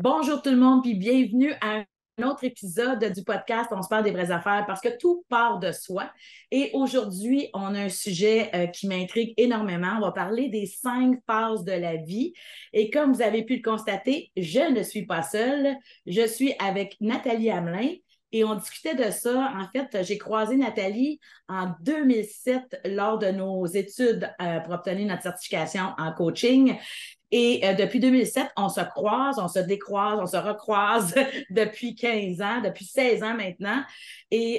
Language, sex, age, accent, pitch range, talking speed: French, female, 30-49, Canadian, 190-240 Hz, 180 wpm